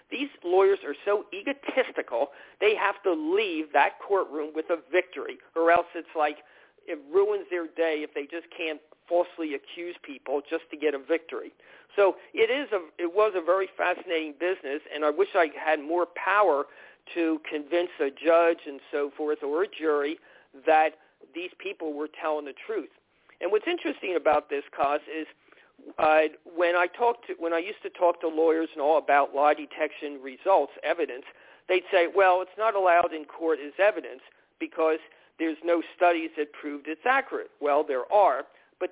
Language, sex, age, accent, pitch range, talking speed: English, male, 50-69, American, 155-235 Hz, 175 wpm